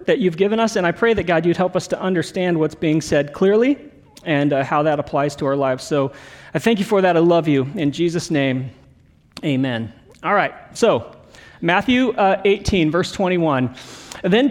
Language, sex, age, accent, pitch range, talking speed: English, male, 40-59, American, 170-225 Hz, 200 wpm